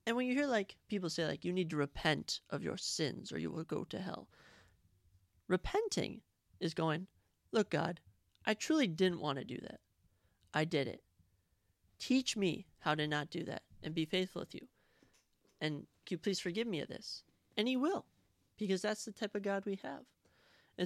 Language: English